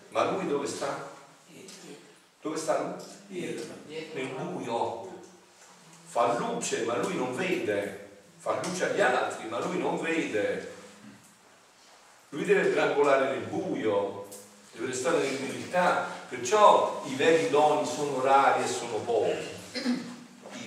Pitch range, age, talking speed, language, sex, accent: 150-235 Hz, 50-69, 120 wpm, Italian, male, native